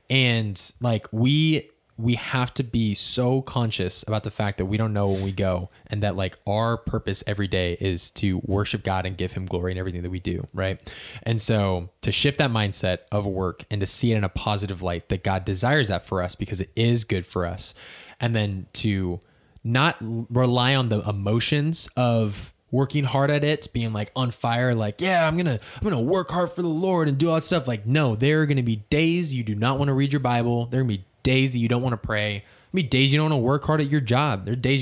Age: 20-39